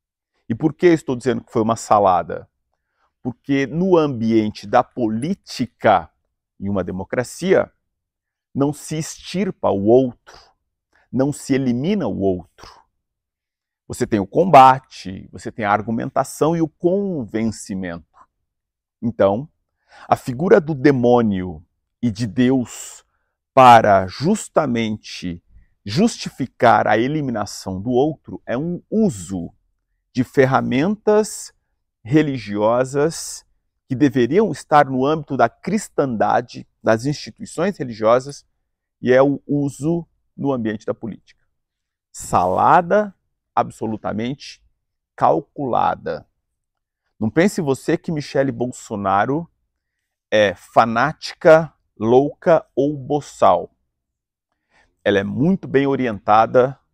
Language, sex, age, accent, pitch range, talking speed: English, male, 50-69, Brazilian, 105-150 Hz, 100 wpm